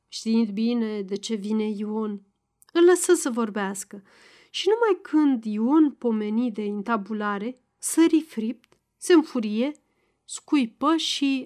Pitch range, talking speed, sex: 220-320 Hz, 120 wpm, female